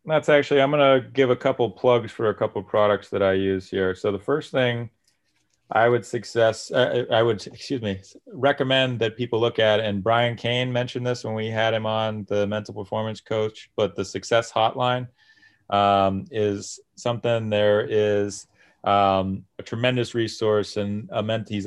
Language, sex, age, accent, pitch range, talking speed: English, male, 30-49, American, 95-115 Hz, 185 wpm